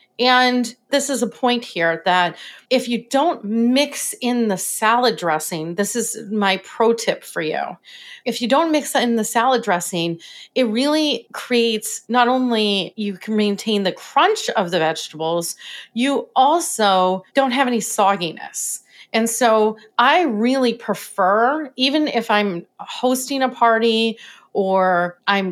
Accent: American